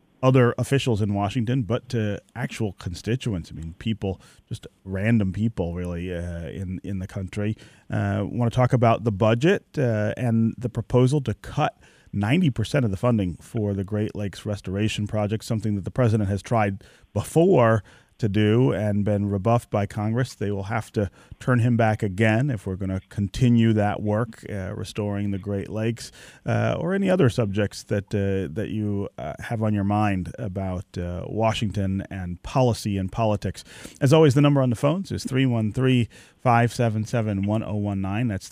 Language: English